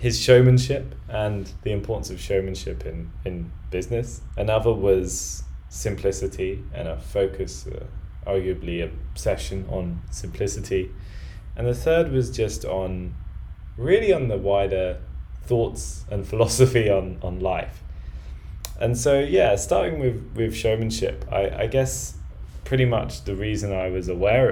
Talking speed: 130 wpm